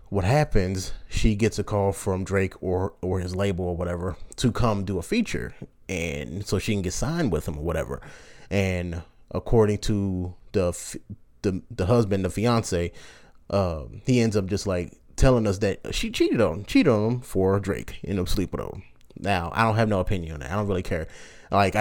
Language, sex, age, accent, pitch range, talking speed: English, male, 20-39, American, 90-115 Hz, 205 wpm